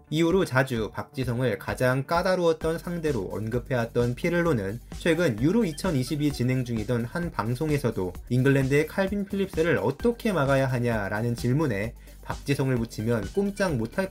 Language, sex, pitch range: Korean, male, 115-170 Hz